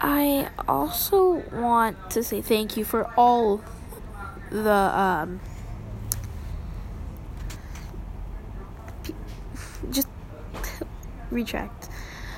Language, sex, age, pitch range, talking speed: English, female, 10-29, 185-235 Hz, 65 wpm